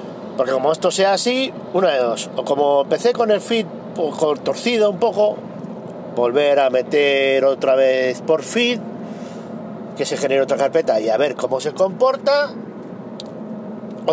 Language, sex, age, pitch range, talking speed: Spanish, male, 40-59, 140-220 Hz, 155 wpm